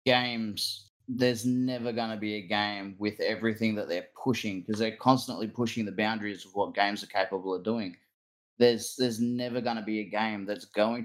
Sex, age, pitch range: male, 20-39, 105-120 Hz